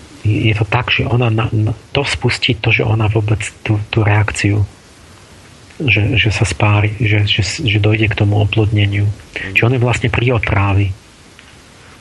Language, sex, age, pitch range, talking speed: Slovak, male, 40-59, 105-115 Hz, 155 wpm